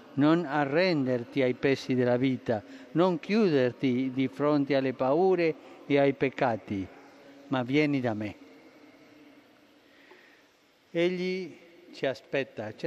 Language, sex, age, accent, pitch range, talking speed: Italian, male, 50-69, native, 130-170 Hz, 105 wpm